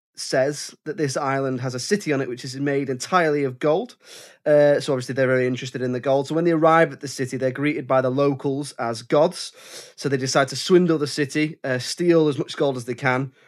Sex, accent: male, British